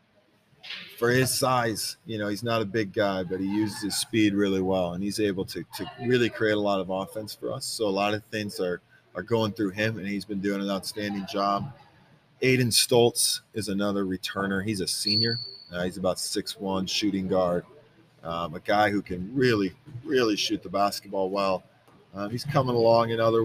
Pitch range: 100-120 Hz